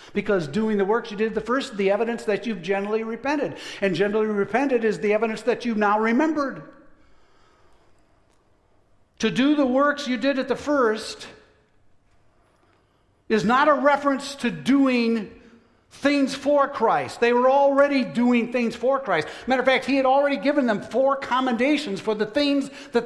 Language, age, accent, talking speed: English, 60-79, American, 170 wpm